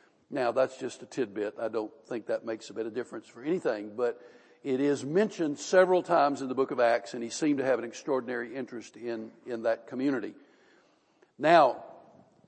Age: 60-79